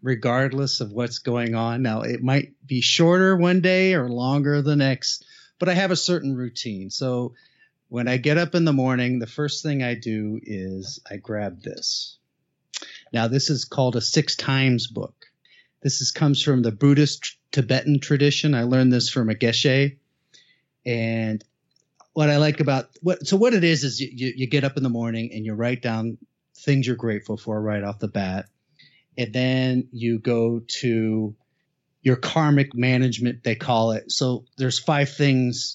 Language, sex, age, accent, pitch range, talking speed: English, male, 30-49, American, 115-140 Hz, 180 wpm